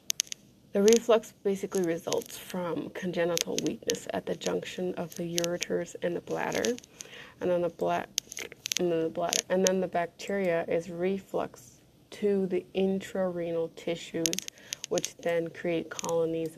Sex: female